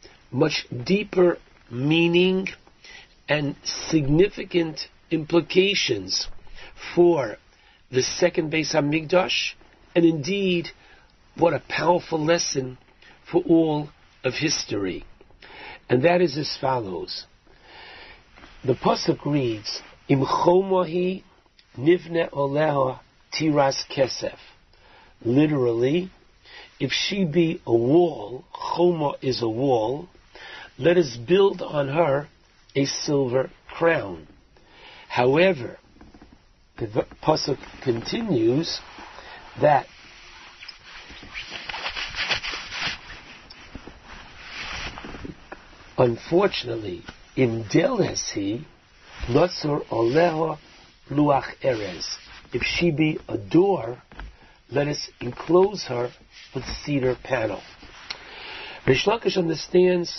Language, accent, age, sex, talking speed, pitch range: English, American, 60-79, male, 80 wpm, 135-180 Hz